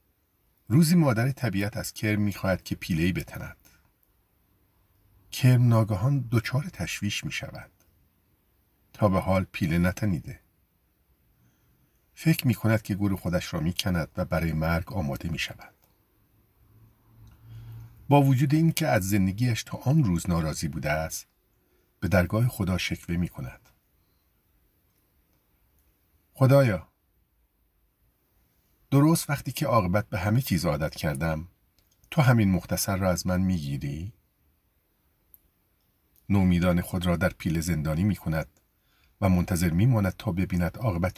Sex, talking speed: male, 120 wpm